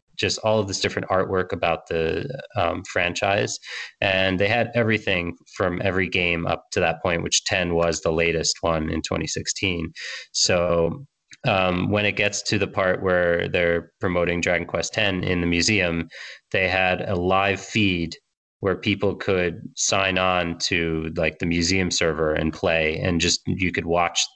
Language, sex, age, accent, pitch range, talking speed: English, male, 30-49, American, 85-100 Hz, 170 wpm